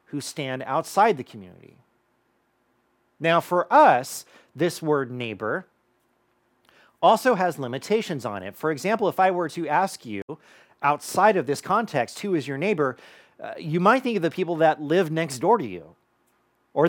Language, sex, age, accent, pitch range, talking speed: English, male, 40-59, American, 125-180 Hz, 165 wpm